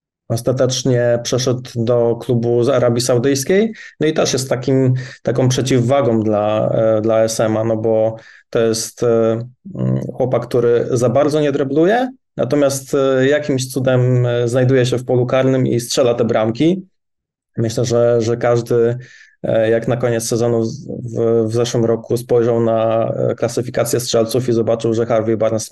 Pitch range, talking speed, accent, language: 115-130 Hz, 140 wpm, native, Polish